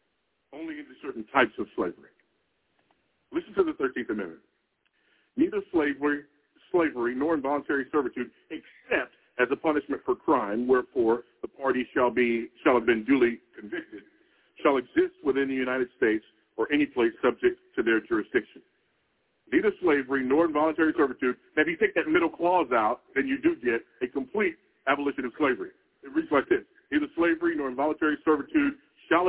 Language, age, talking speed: English, 50-69, 160 wpm